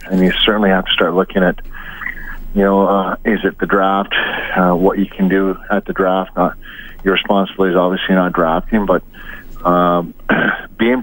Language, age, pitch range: English, 40-59, 90-100 Hz